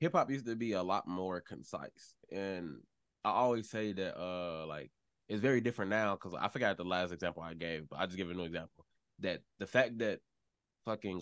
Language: English